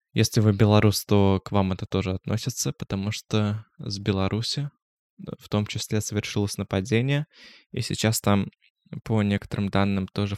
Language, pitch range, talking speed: Russian, 100-115 Hz, 145 wpm